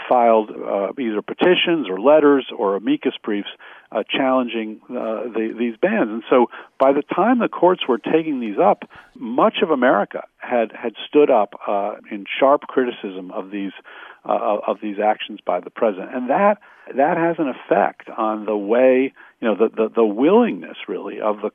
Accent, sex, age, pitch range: American, male, 50-69, 105-130 Hz